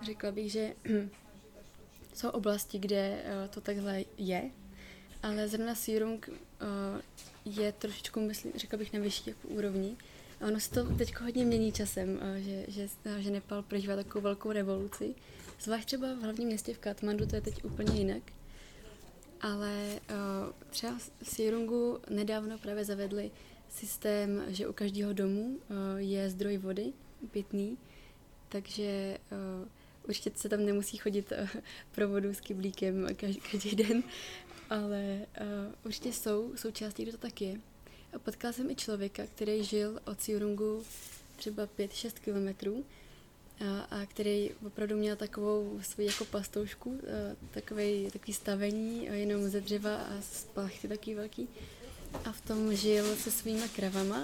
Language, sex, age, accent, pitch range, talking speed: Czech, female, 20-39, native, 200-220 Hz, 140 wpm